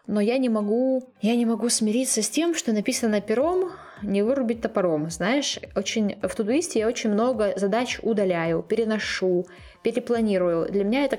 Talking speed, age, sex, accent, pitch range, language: 160 wpm, 20-39, female, native, 185-230 Hz, Ukrainian